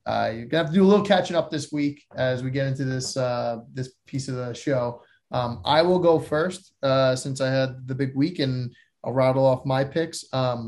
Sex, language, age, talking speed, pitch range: male, English, 20-39, 235 wpm, 120-145 Hz